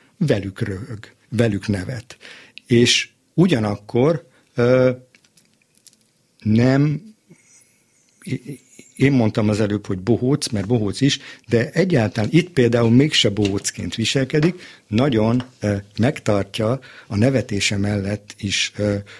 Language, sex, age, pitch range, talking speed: Hungarian, male, 50-69, 105-125 Hz, 100 wpm